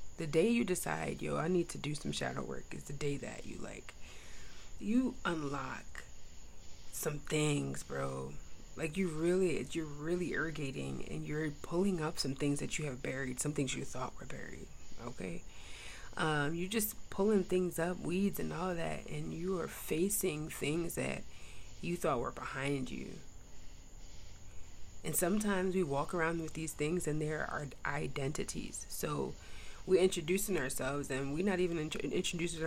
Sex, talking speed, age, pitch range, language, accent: female, 165 wpm, 30-49, 130-180 Hz, English, American